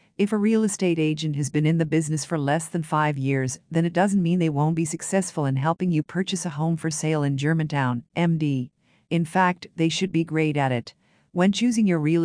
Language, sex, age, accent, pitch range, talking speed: English, female, 50-69, American, 150-180 Hz, 225 wpm